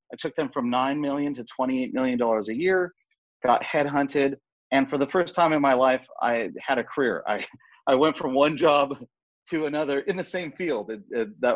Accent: American